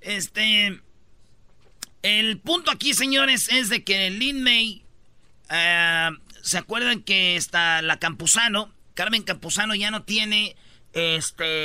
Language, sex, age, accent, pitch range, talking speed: Spanish, male, 40-59, Mexican, 165-215 Hz, 120 wpm